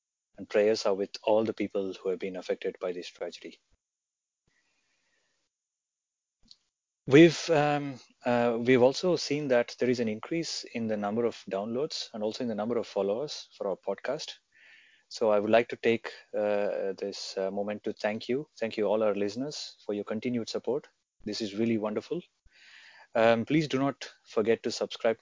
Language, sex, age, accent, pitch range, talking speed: English, male, 30-49, Indian, 105-135 Hz, 175 wpm